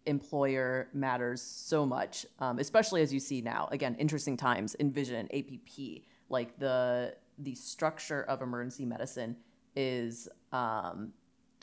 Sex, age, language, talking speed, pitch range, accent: female, 30-49, English, 130 wpm, 130-180 Hz, American